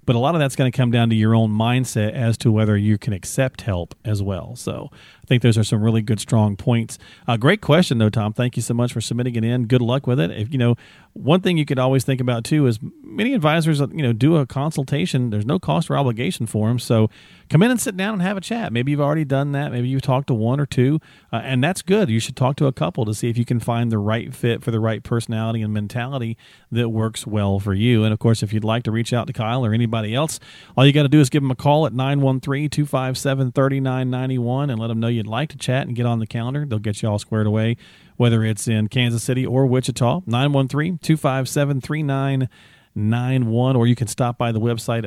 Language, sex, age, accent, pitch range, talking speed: English, male, 40-59, American, 115-140 Hz, 250 wpm